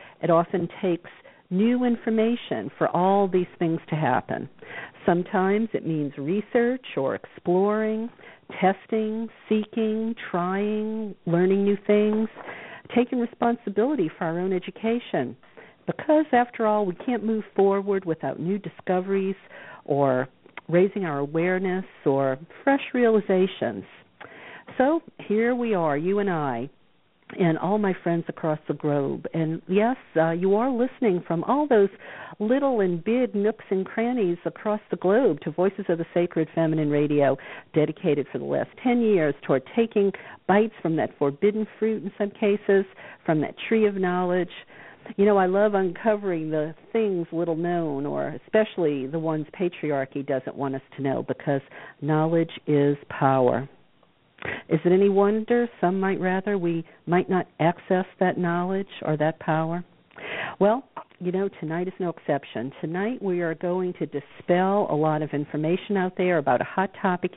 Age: 50-69